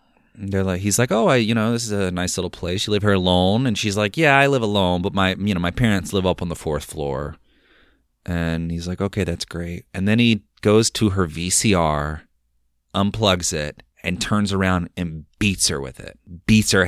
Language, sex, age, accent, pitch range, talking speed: English, male, 30-49, American, 90-115 Hz, 225 wpm